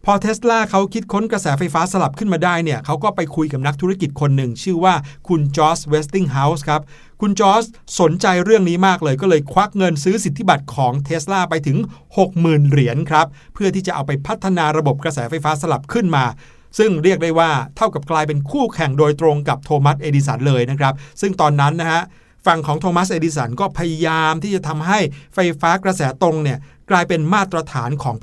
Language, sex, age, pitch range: Thai, male, 60-79, 145-185 Hz